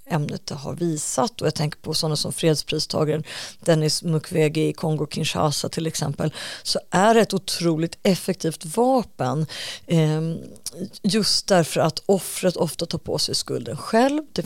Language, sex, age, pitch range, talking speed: Swedish, female, 30-49, 160-190 Hz, 150 wpm